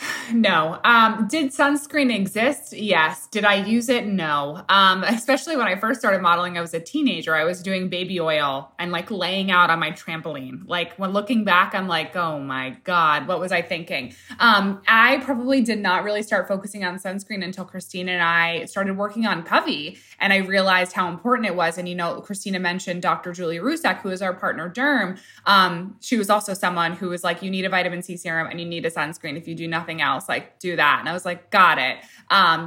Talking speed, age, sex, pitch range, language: 220 wpm, 20-39, female, 165-205 Hz, English